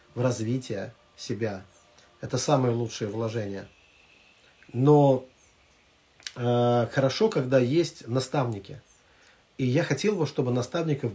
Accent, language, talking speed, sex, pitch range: native, Russian, 100 wpm, male, 110-145 Hz